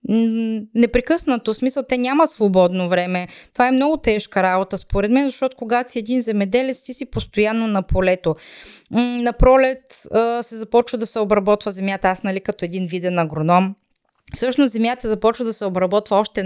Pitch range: 195-235 Hz